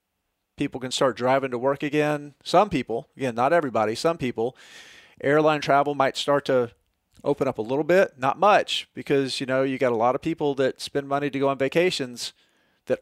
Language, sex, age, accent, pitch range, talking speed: English, male, 40-59, American, 130-155 Hz, 200 wpm